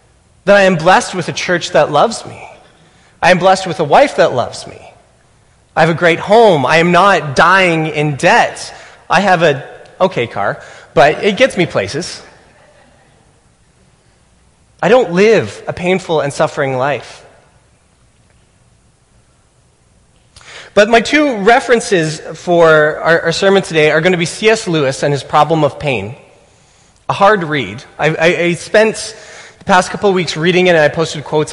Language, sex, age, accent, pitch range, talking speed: English, male, 30-49, American, 145-185 Hz, 165 wpm